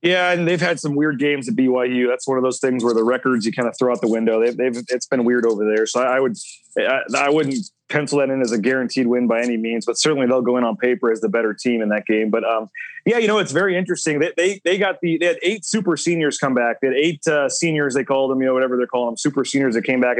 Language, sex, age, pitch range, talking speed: English, male, 30-49, 135-170 Hz, 300 wpm